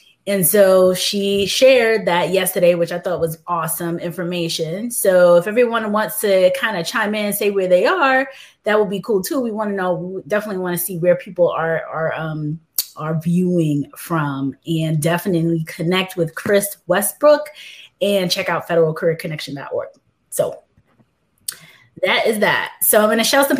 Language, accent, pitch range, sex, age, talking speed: English, American, 175-235 Hz, female, 20-39, 170 wpm